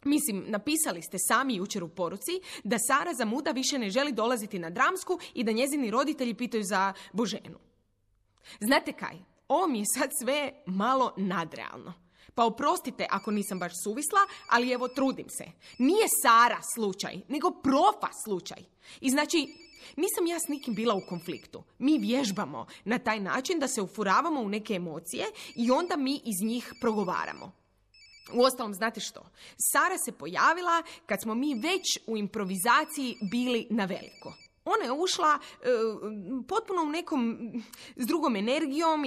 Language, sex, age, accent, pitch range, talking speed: Croatian, female, 20-39, native, 205-295 Hz, 155 wpm